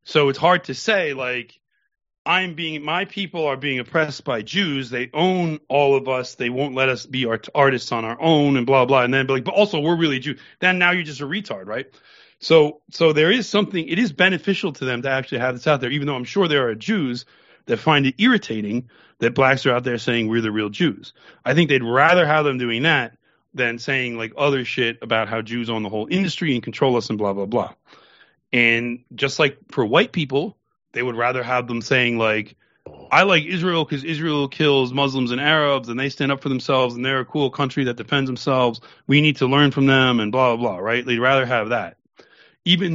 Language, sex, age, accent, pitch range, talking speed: English, male, 30-49, American, 120-155 Hz, 230 wpm